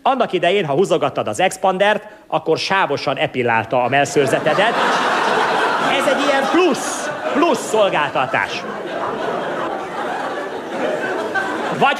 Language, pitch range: Hungarian, 155-245 Hz